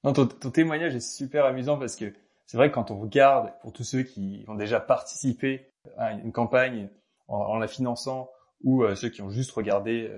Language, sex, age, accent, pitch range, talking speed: French, male, 20-39, French, 110-130 Hz, 220 wpm